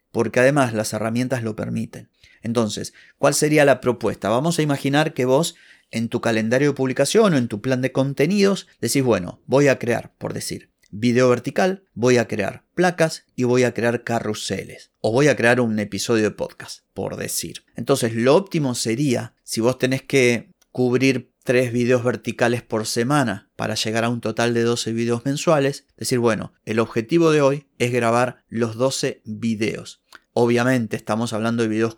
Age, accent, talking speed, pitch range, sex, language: 30-49, Argentinian, 175 wpm, 110-130 Hz, male, Spanish